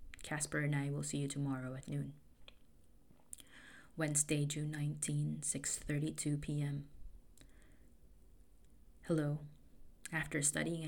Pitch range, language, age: 140-160 Hz, English, 20-39